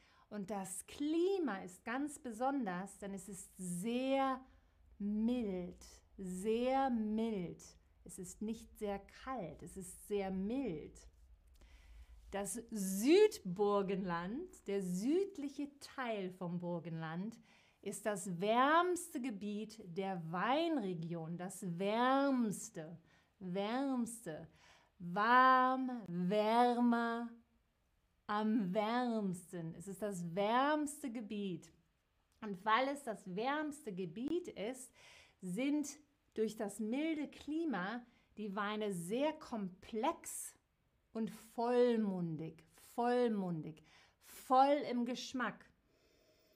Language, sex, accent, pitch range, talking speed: German, female, German, 185-250 Hz, 90 wpm